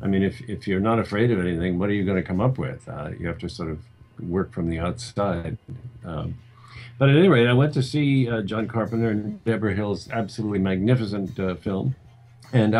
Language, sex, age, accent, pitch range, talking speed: Portuguese, male, 50-69, American, 95-120 Hz, 220 wpm